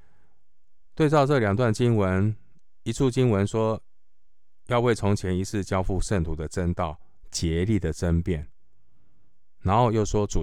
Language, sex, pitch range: Chinese, male, 85-110 Hz